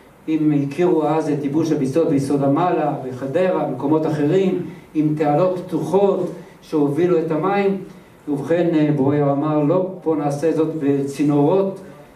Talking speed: 125 wpm